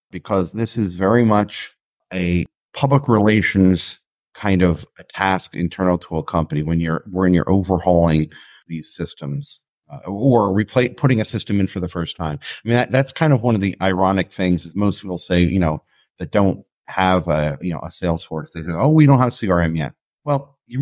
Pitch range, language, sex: 90-120 Hz, English, male